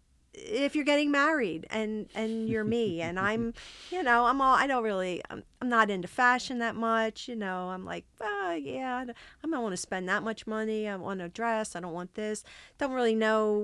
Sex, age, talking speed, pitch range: female, 40-59, 215 wpm, 190-250 Hz